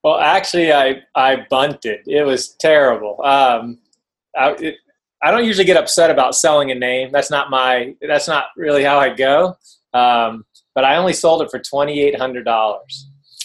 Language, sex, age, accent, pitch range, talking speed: English, male, 20-39, American, 125-150 Hz, 180 wpm